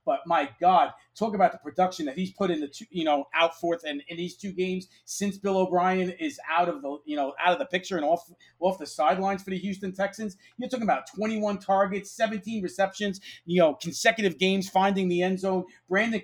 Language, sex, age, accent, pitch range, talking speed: English, male, 40-59, American, 165-195 Hz, 225 wpm